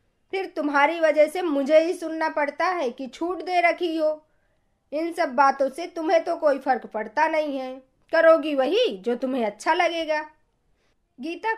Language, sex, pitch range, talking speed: Hindi, female, 255-335 Hz, 165 wpm